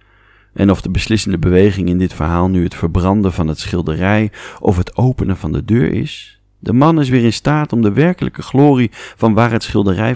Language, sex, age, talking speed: English, male, 40-59, 205 wpm